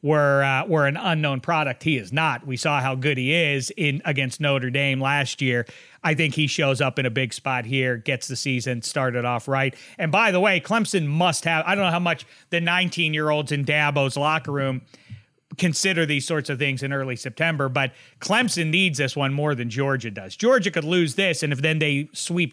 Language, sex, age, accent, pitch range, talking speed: English, male, 40-59, American, 130-155 Hz, 220 wpm